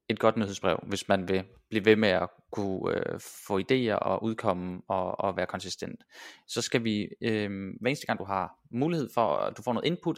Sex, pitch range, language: male, 100-125 Hz, Danish